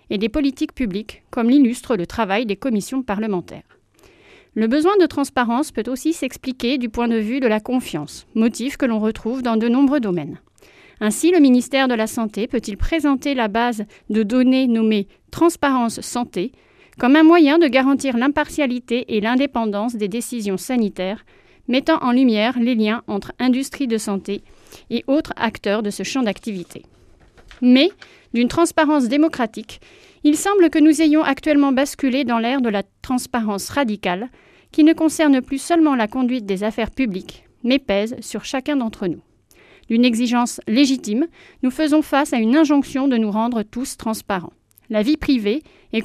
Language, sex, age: French, female, 40-59